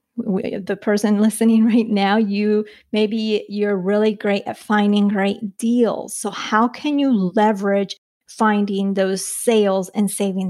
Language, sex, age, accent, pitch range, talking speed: English, female, 30-49, American, 205-235 Hz, 145 wpm